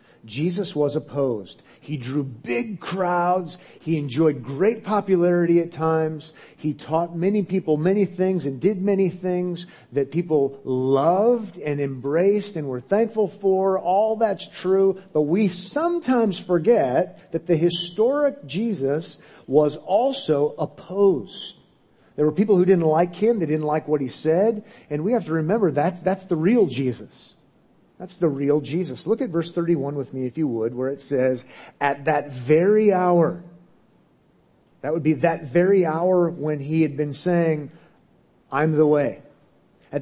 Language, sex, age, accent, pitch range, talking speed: English, male, 40-59, American, 145-185 Hz, 155 wpm